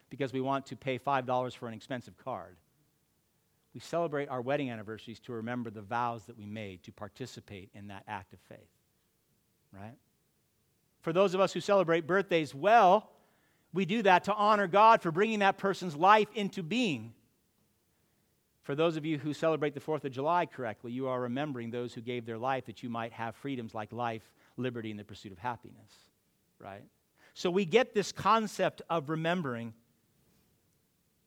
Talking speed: 175 wpm